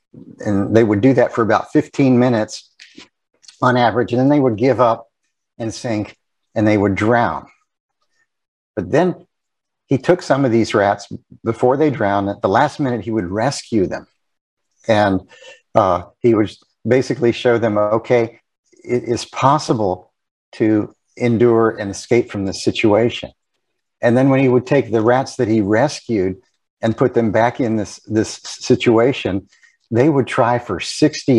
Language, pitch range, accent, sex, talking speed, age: English, 105-125 Hz, American, male, 160 wpm, 50-69